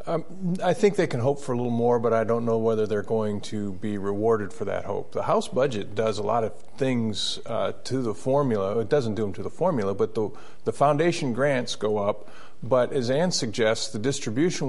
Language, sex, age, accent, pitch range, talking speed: English, male, 40-59, American, 110-140 Hz, 225 wpm